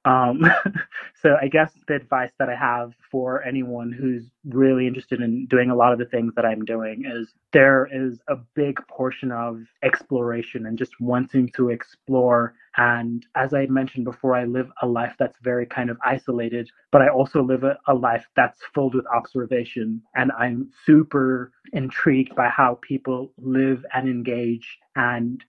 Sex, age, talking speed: male, 30-49, 170 wpm